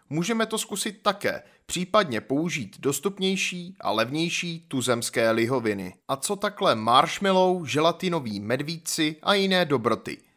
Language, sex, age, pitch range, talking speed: Czech, male, 30-49, 130-190 Hz, 115 wpm